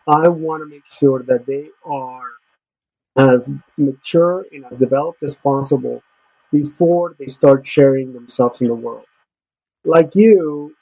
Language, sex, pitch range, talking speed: English, male, 130-155 Hz, 140 wpm